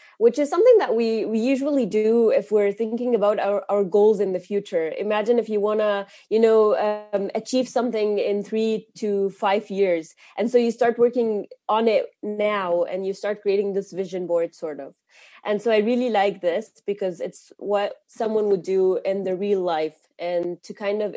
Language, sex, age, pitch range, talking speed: German, female, 20-39, 195-235 Hz, 200 wpm